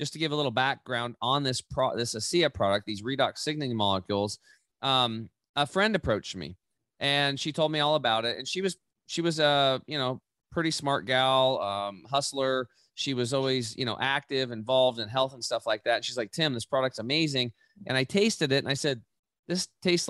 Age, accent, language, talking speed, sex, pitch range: 30-49, American, English, 210 wpm, male, 115-145 Hz